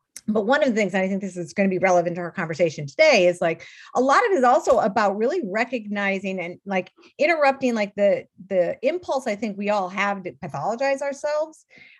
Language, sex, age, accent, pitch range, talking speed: English, female, 40-59, American, 175-225 Hz, 220 wpm